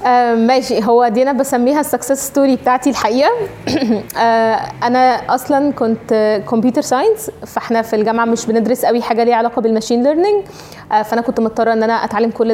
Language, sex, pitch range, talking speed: Arabic, female, 220-255 Hz, 170 wpm